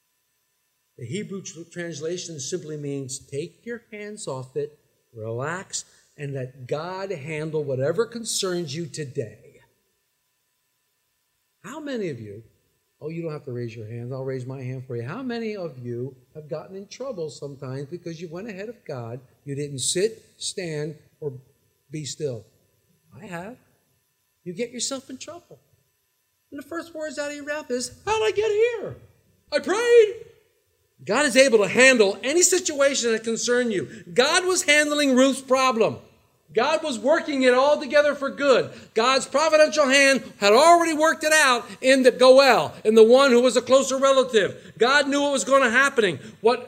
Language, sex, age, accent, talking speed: English, male, 50-69, American, 170 wpm